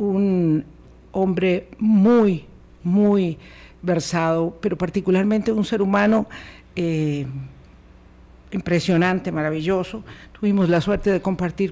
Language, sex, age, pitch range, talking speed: Spanish, female, 50-69, 165-195 Hz, 90 wpm